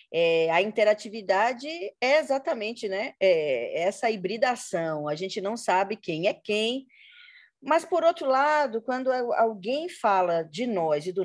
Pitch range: 175-245 Hz